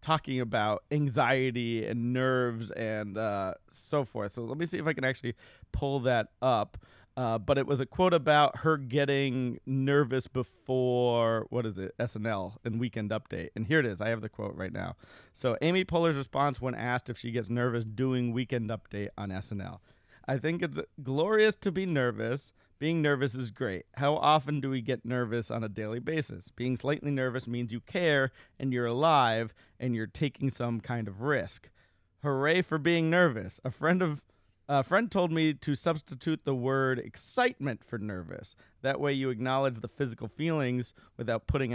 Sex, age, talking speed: male, 30-49, 185 wpm